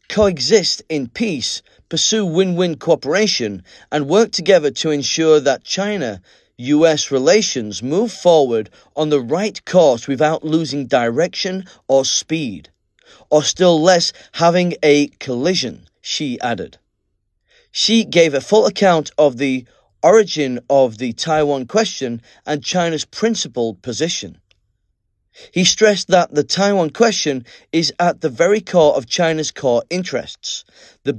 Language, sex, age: Chinese, male, 30-49